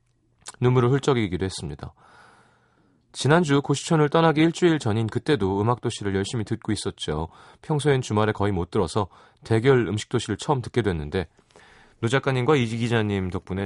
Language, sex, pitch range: Korean, male, 105-140 Hz